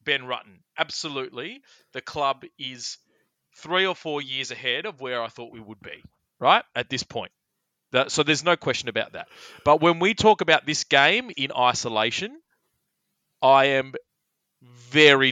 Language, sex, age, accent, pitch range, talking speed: English, male, 30-49, Australian, 120-145 Hz, 155 wpm